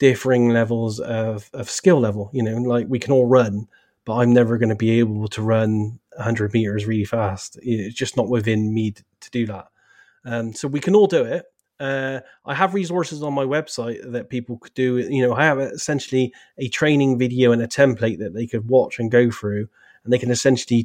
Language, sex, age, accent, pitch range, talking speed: English, male, 30-49, British, 115-140 Hz, 215 wpm